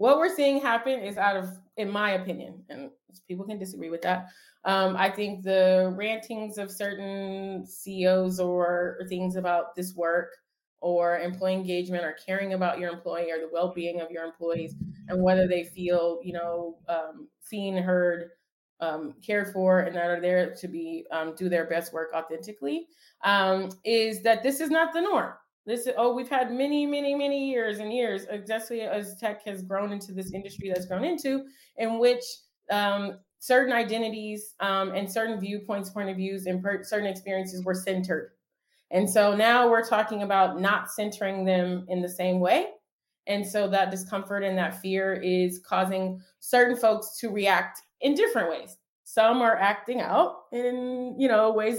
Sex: female